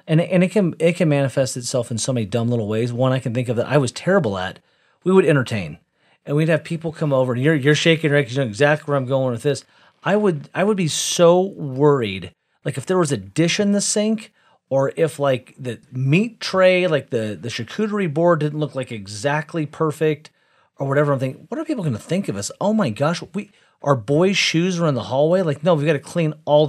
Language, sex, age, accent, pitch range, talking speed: English, male, 40-59, American, 135-170 Hz, 245 wpm